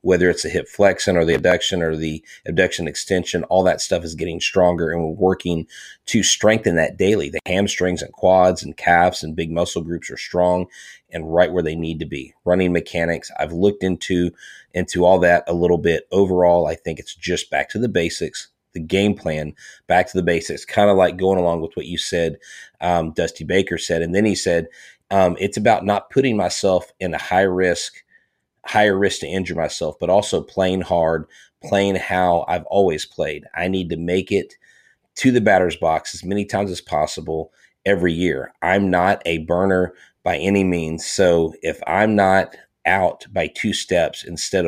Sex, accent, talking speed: male, American, 190 wpm